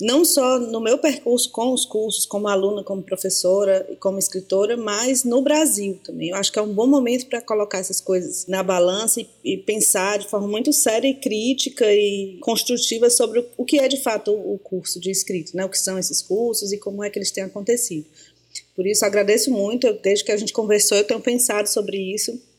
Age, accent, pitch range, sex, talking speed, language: 20-39, Brazilian, 185-235 Hz, female, 220 wpm, Portuguese